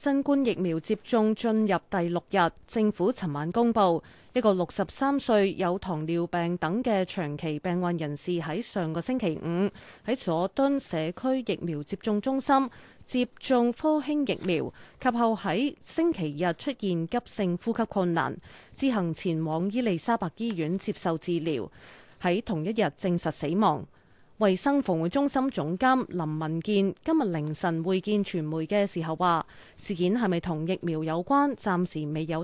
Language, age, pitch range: Chinese, 20-39, 165-235 Hz